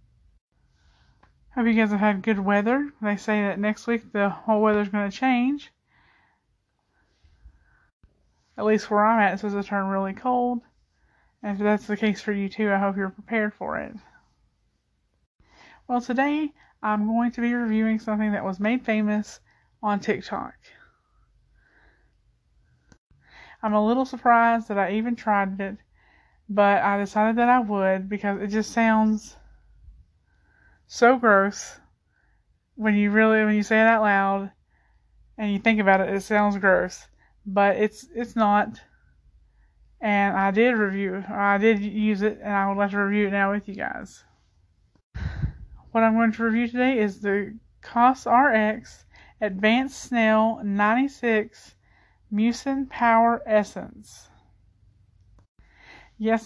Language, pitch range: English, 200-230 Hz